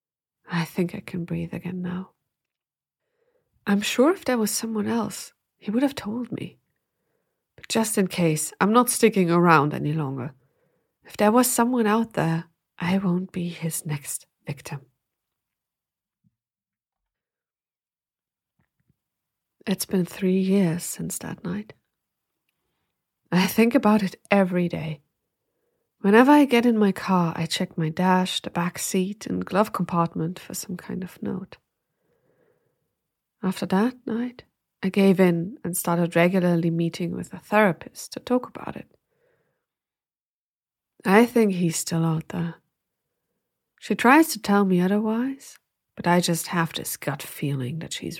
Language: English